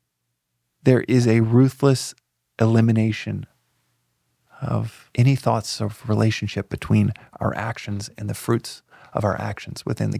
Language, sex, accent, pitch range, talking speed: English, male, American, 100-120 Hz, 125 wpm